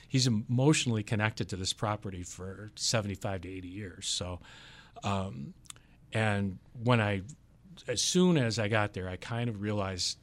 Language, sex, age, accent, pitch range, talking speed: English, male, 40-59, American, 100-125 Hz, 155 wpm